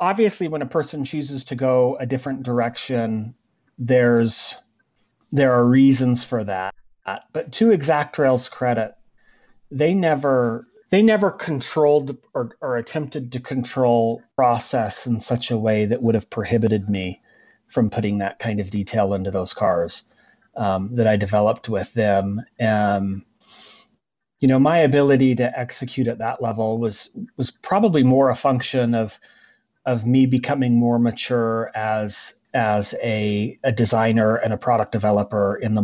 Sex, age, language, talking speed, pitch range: male, 30-49, English, 145 wpm, 110-135 Hz